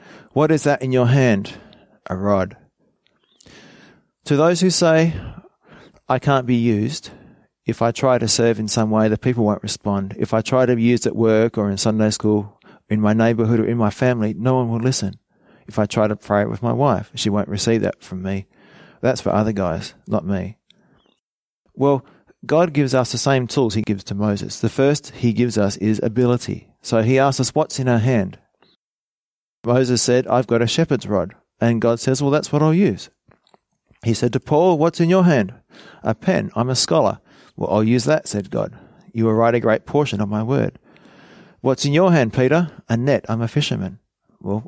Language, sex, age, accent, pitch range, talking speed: English, male, 30-49, Australian, 105-135 Hz, 205 wpm